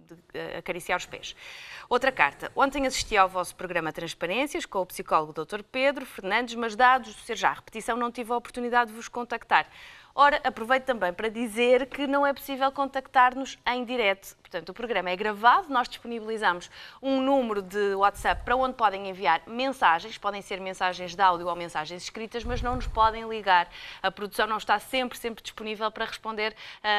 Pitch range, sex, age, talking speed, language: 190-245 Hz, female, 20-39, 175 wpm, Portuguese